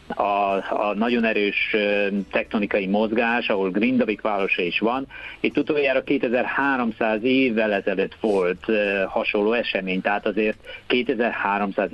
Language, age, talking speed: Hungarian, 50-69, 110 wpm